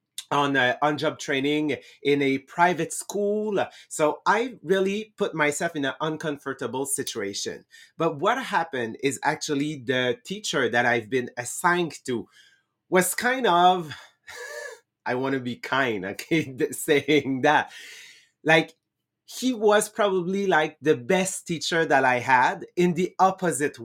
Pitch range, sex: 140-185 Hz, male